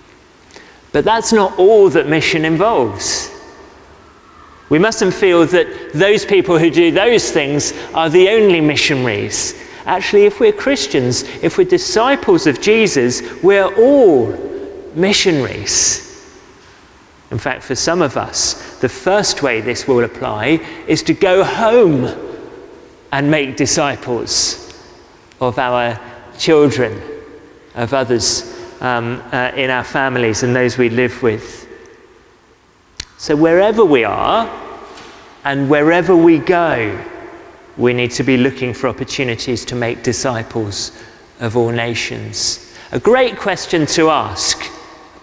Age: 40-59